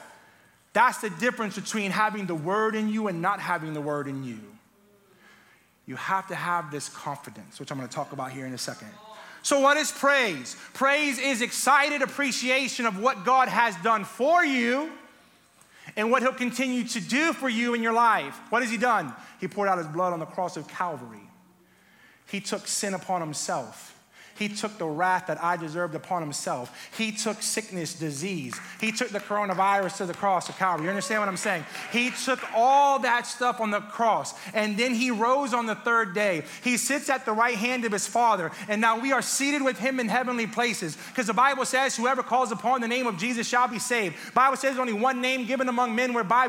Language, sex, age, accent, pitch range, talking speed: English, male, 30-49, American, 195-255 Hz, 210 wpm